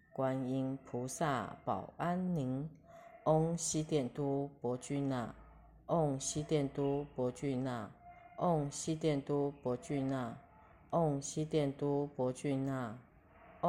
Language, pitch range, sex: Chinese, 130-155 Hz, female